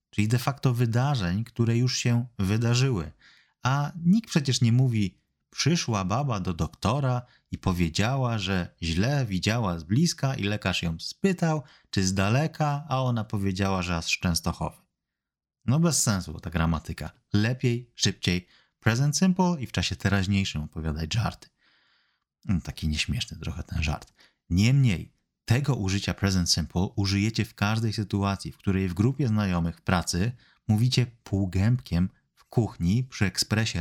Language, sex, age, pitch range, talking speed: Polish, male, 30-49, 95-130 Hz, 145 wpm